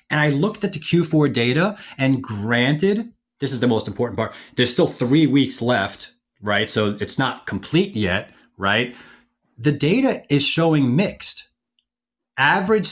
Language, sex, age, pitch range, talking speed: English, male, 30-49, 120-170 Hz, 155 wpm